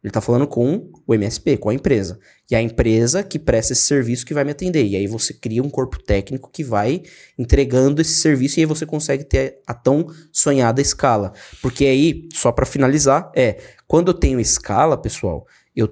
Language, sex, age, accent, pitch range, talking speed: Portuguese, male, 20-39, Brazilian, 120-150 Hz, 205 wpm